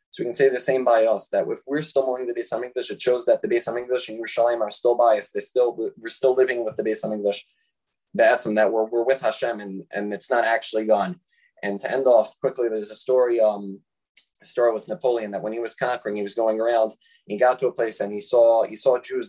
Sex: male